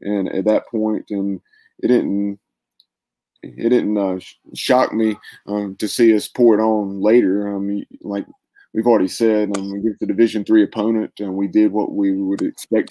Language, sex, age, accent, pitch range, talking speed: English, male, 20-39, American, 100-115 Hz, 180 wpm